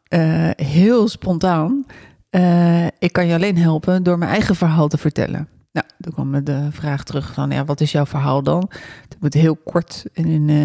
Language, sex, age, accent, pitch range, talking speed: Dutch, female, 40-59, Dutch, 155-185 Hz, 190 wpm